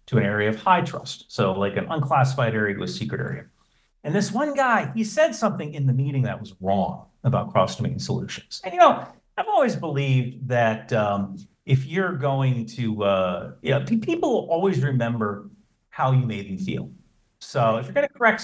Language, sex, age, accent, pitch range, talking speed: English, male, 40-59, American, 115-145 Hz, 190 wpm